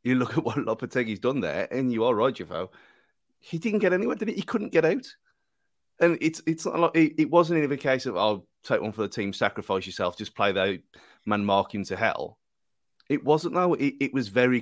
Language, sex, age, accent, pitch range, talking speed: English, male, 30-49, British, 115-155 Hz, 240 wpm